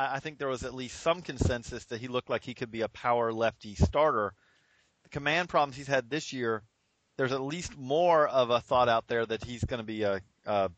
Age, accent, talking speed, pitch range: 40-59, American, 235 wpm, 110-135 Hz